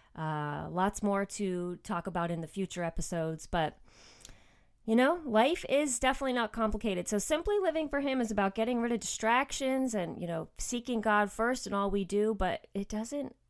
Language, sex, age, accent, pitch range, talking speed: English, female, 30-49, American, 170-215 Hz, 185 wpm